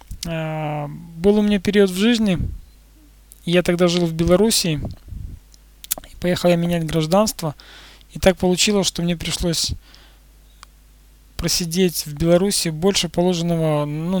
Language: Russian